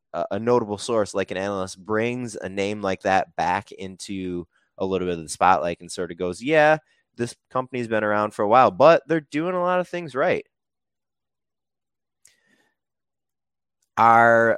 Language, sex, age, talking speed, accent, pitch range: English, male, 20-39, 165 wpm, American, 100-120 Hz